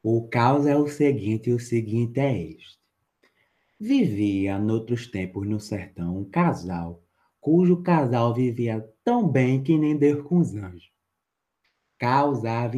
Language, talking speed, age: Portuguese, 135 wpm, 20-39